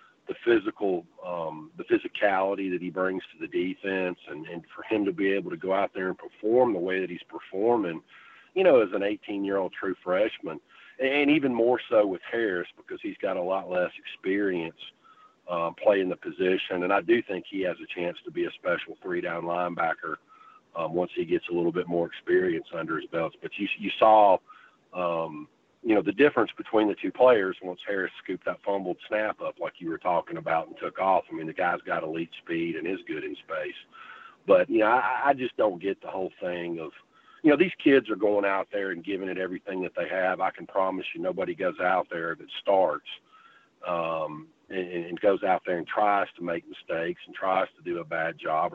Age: 40-59